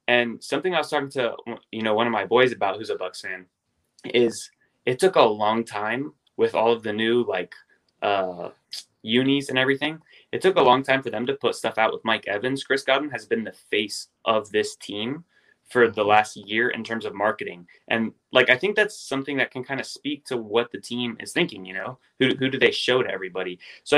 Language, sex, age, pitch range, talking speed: English, male, 20-39, 105-135 Hz, 230 wpm